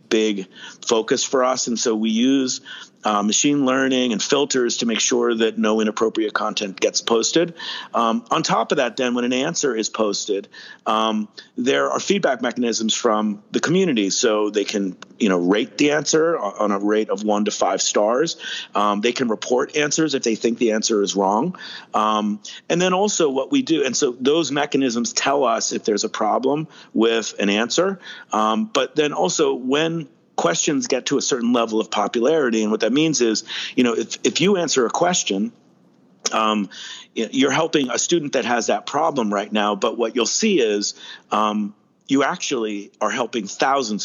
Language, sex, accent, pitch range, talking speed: English, male, American, 105-135 Hz, 185 wpm